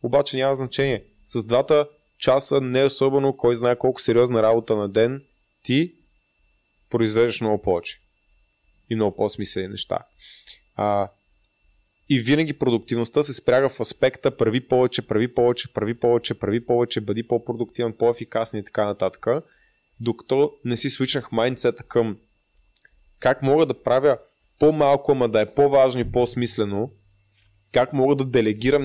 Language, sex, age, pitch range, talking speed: Bulgarian, male, 20-39, 105-130 Hz, 135 wpm